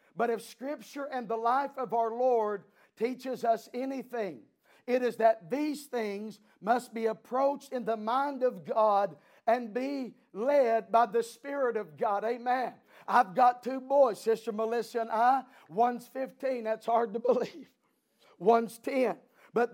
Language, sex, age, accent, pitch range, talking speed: English, male, 50-69, American, 230-265 Hz, 155 wpm